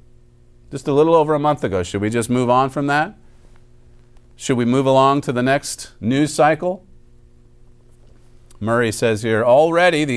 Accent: American